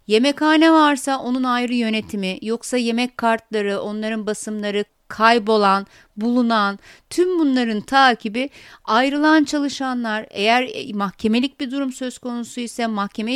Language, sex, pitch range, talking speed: Turkish, female, 200-260 Hz, 110 wpm